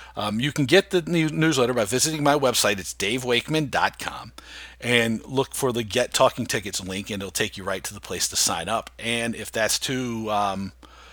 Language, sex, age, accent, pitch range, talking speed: English, male, 50-69, American, 110-150 Hz, 200 wpm